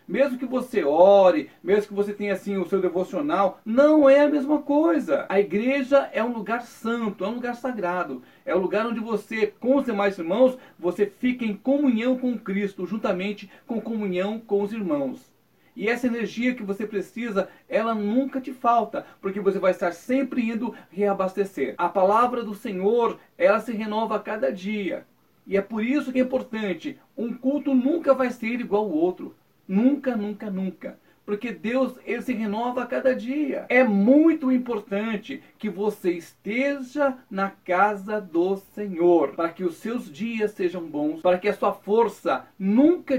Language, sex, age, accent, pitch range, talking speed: Portuguese, male, 40-59, Brazilian, 195-255 Hz, 170 wpm